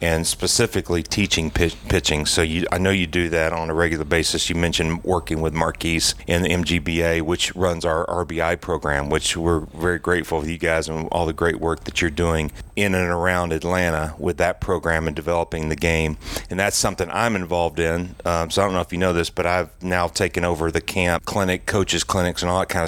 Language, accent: English, American